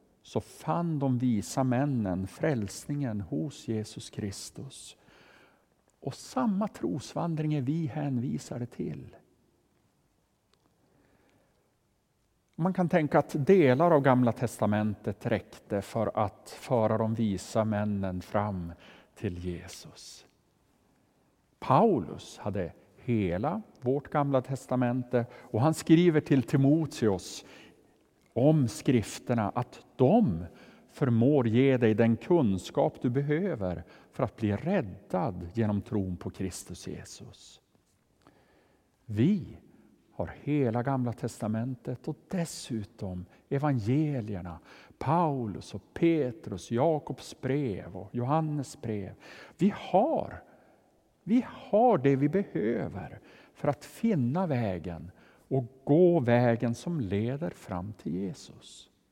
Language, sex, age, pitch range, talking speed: Swedish, male, 50-69, 105-150 Hz, 100 wpm